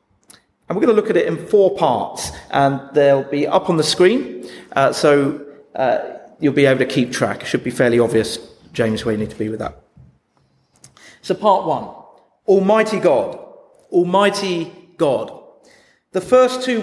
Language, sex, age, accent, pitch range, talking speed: English, male, 30-49, British, 165-210 Hz, 175 wpm